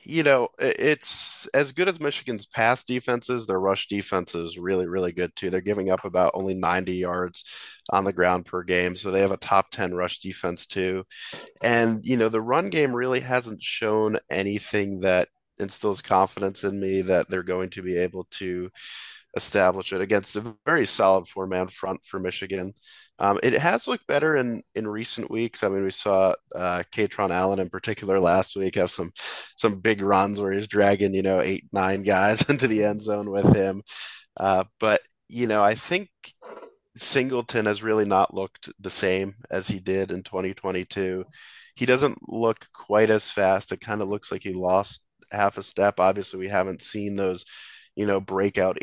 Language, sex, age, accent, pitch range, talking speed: English, male, 30-49, American, 95-110 Hz, 185 wpm